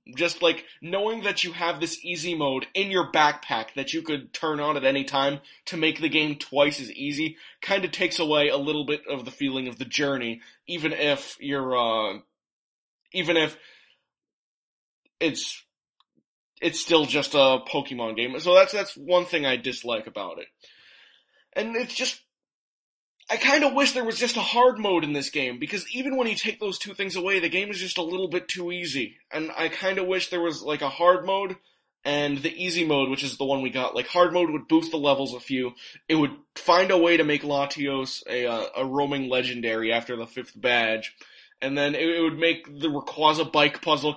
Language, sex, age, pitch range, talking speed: English, male, 20-39, 140-180 Hz, 205 wpm